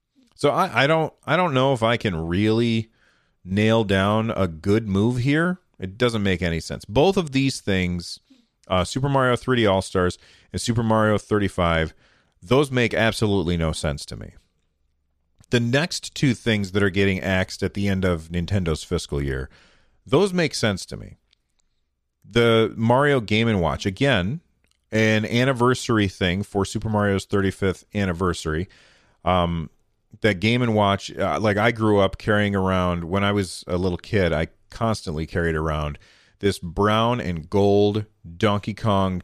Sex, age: male, 40-59